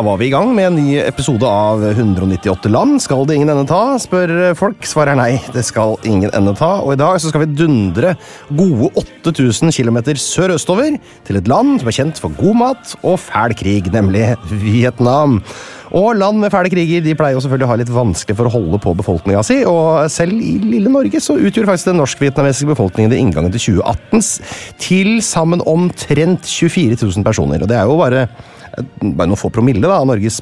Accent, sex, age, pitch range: Swedish, male, 30-49, 115-175 Hz